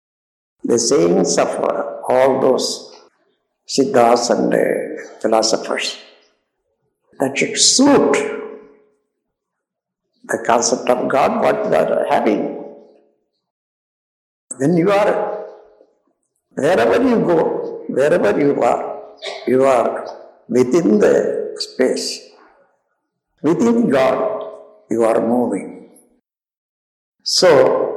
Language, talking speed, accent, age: Tamil, 85 wpm, native, 60-79